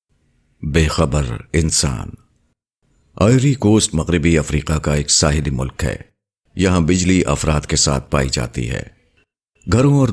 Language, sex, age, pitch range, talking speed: Urdu, male, 50-69, 70-90 Hz, 130 wpm